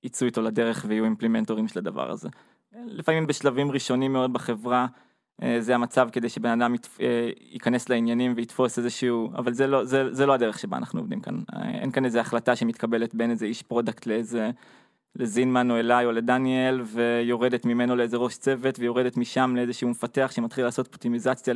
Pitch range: 120-135 Hz